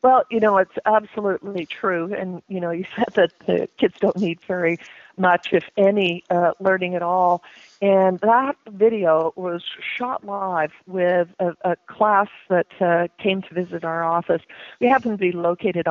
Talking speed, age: 175 wpm, 50-69